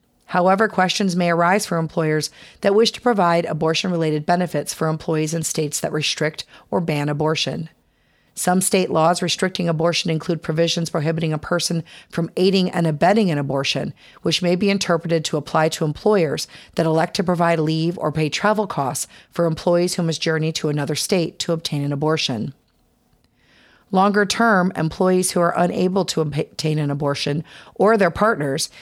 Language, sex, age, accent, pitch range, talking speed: English, female, 40-59, American, 155-185 Hz, 160 wpm